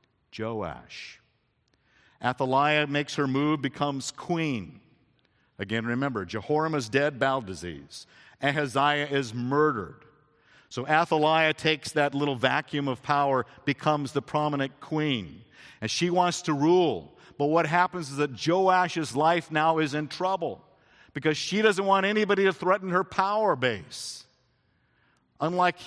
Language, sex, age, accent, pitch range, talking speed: English, male, 50-69, American, 125-170 Hz, 130 wpm